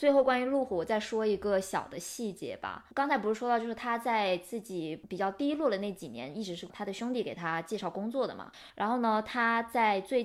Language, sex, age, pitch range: Chinese, female, 20-39, 195-270 Hz